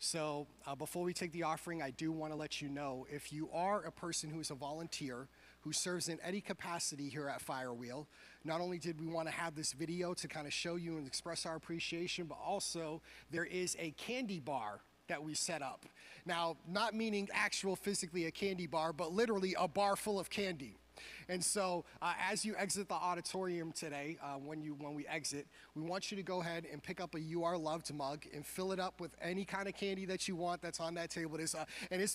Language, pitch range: English, 155-195 Hz